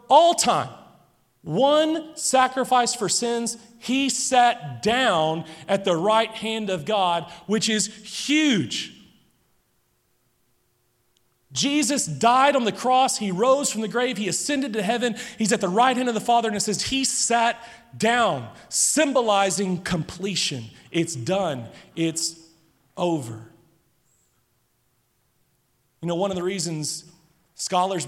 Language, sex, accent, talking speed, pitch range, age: English, male, American, 125 wpm, 150-205 Hz, 40-59